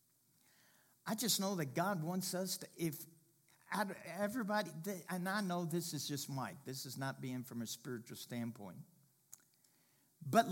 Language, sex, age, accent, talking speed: English, male, 50-69, American, 150 wpm